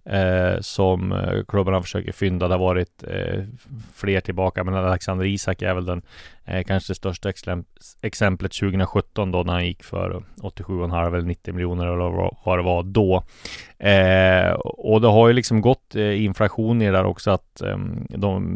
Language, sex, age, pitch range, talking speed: English, male, 30-49, 90-105 Hz, 145 wpm